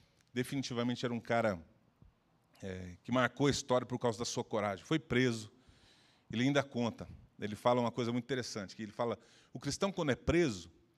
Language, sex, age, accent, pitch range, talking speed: Portuguese, male, 40-59, Brazilian, 105-130 Hz, 175 wpm